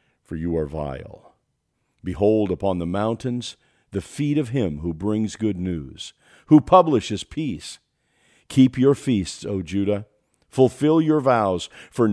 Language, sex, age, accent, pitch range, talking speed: English, male, 50-69, American, 95-145 Hz, 140 wpm